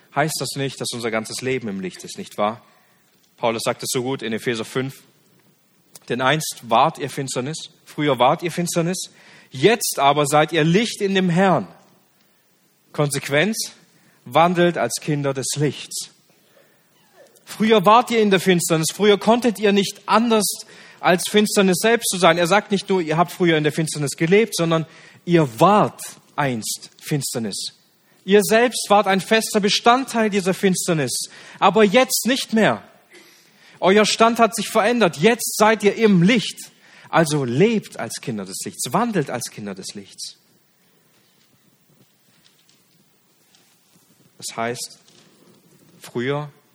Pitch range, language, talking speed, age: 140-200 Hz, German, 140 wpm, 40-59